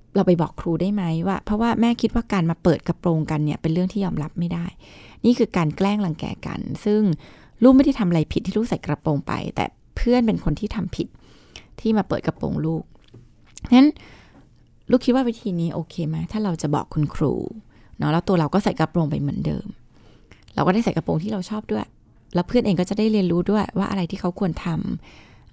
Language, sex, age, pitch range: Thai, female, 20-39, 160-205 Hz